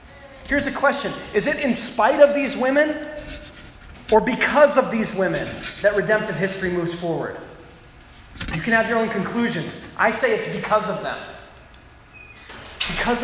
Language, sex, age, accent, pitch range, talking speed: English, male, 20-39, American, 170-225 Hz, 150 wpm